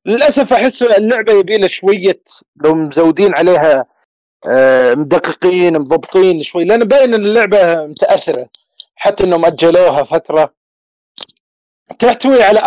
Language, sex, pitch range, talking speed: Arabic, male, 165-220 Hz, 110 wpm